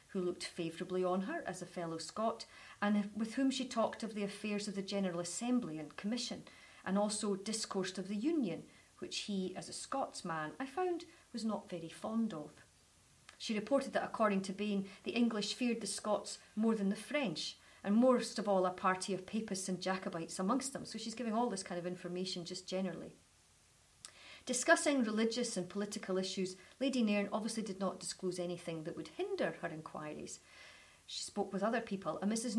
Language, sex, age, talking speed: English, female, 40-59, 190 wpm